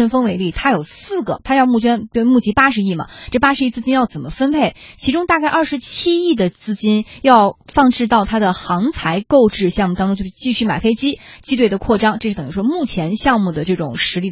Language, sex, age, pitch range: Chinese, female, 20-39, 185-265 Hz